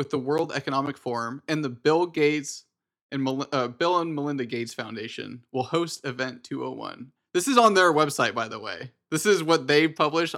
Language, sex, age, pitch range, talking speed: English, male, 20-39, 125-150 Hz, 200 wpm